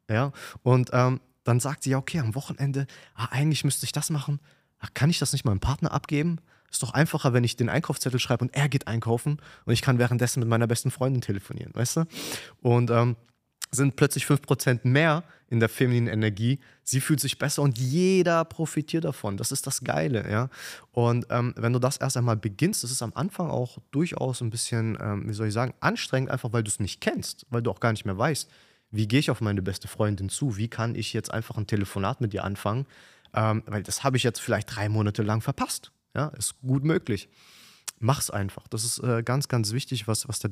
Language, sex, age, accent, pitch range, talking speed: German, male, 20-39, German, 110-140 Hz, 220 wpm